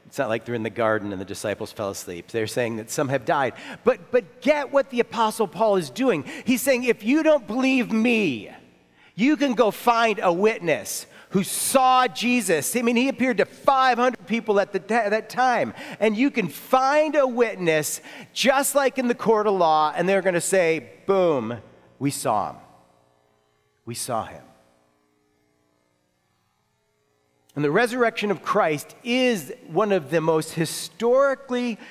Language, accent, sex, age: English, American, male, 40-59